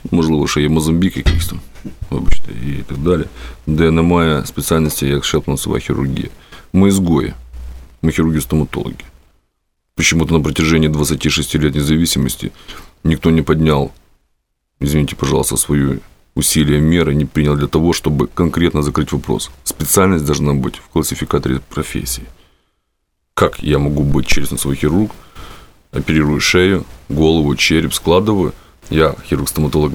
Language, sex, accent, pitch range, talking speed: Russian, male, native, 70-85 Hz, 125 wpm